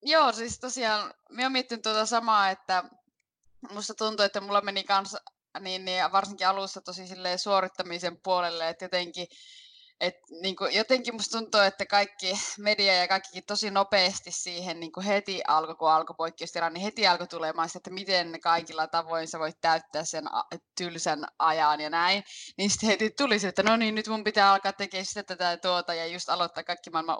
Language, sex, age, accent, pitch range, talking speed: Finnish, female, 20-39, native, 180-240 Hz, 165 wpm